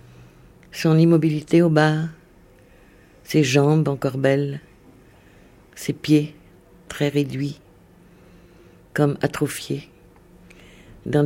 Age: 50-69